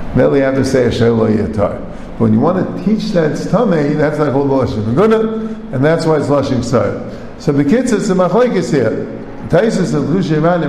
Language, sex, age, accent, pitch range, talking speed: English, male, 50-69, American, 130-175 Hz, 215 wpm